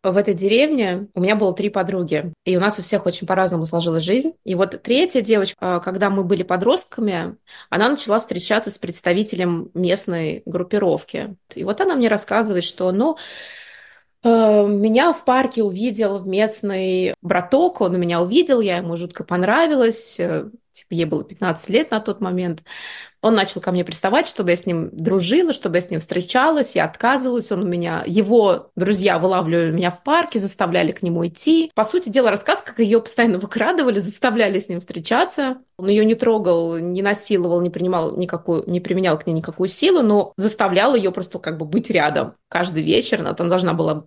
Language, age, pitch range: Russian, 20-39, 180-225 Hz